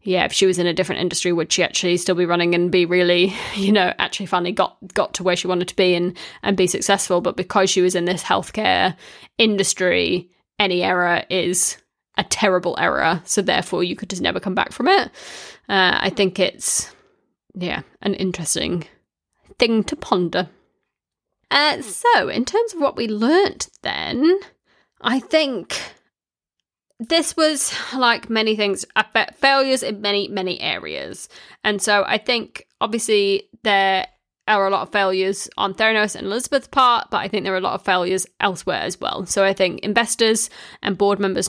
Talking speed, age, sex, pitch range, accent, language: 180 wpm, 20-39, female, 185-230 Hz, British, English